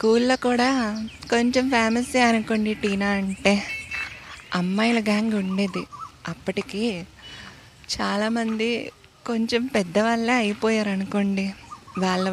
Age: 20-39